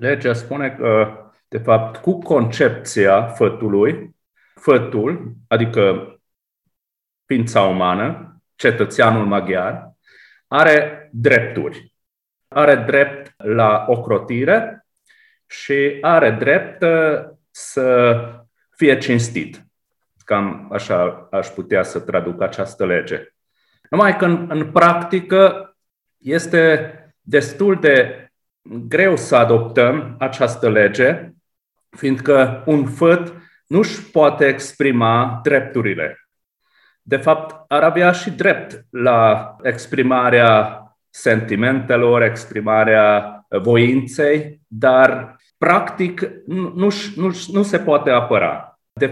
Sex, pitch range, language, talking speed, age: male, 115-165 Hz, Romanian, 90 wpm, 40-59